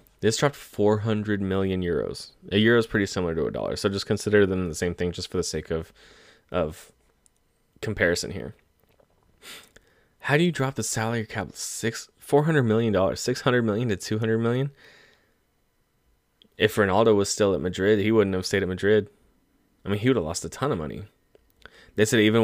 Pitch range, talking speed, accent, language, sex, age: 90-105 Hz, 195 wpm, American, English, male, 20-39